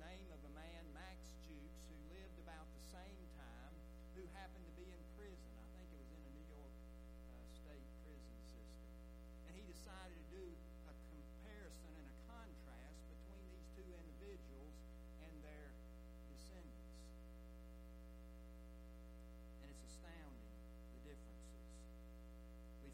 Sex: male